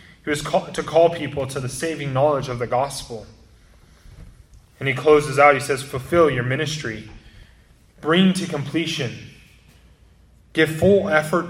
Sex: male